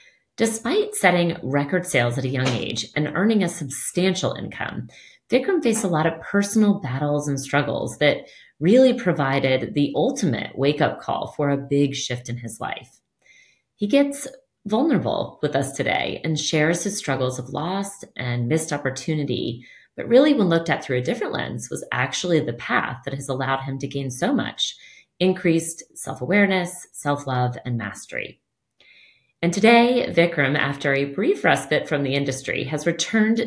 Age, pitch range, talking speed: 30-49, 135-185 Hz, 160 wpm